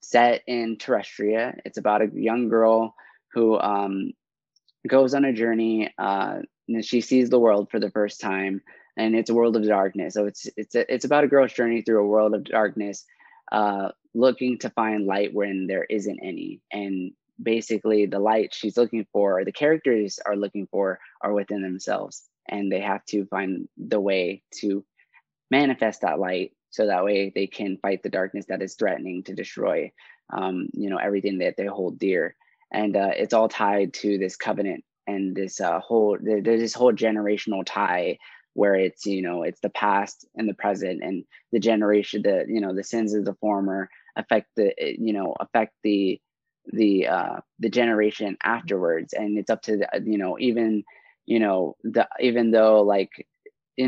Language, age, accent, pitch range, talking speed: English, 20-39, American, 100-115 Hz, 185 wpm